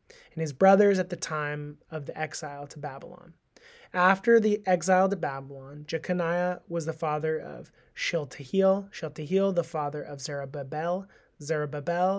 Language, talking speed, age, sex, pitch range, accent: English, 140 wpm, 20-39, male, 145-185 Hz, American